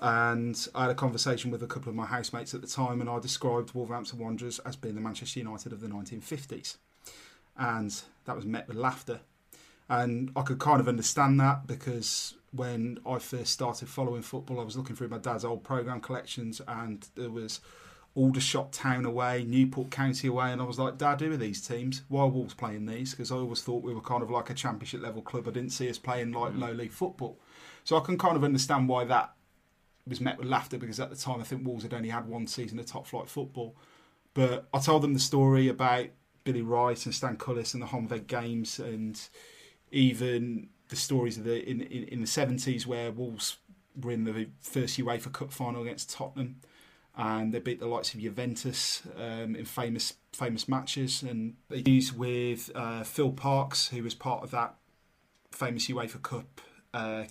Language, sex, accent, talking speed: English, male, British, 200 wpm